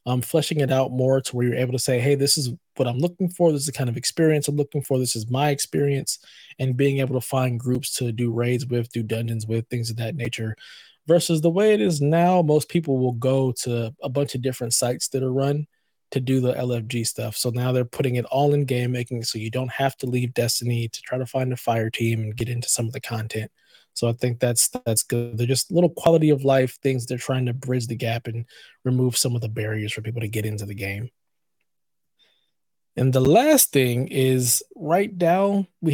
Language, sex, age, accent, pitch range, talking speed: English, male, 20-39, American, 120-145 Hz, 235 wpm